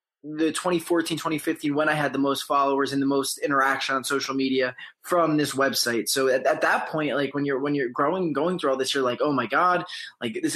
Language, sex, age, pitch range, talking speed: English, male, 20-39, 140-175 Hz, 235 wpm